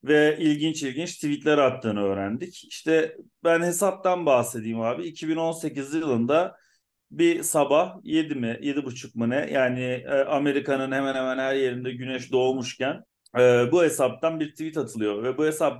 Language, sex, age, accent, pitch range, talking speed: Turkish, male, 40-59, native, 125-165 Hz, 140 wpm